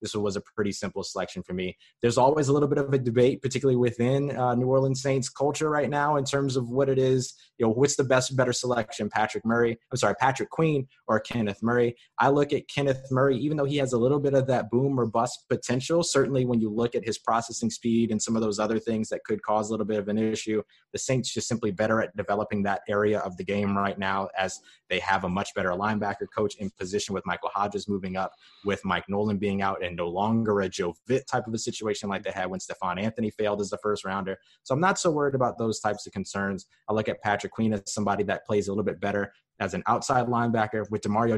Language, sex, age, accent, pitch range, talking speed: English, male, 20-39, American, 100-125 Hz, 250 wpm